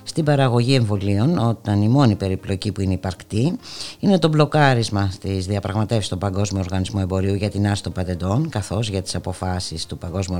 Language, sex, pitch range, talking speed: Greek, female, 100-140 Hz, 165 wpm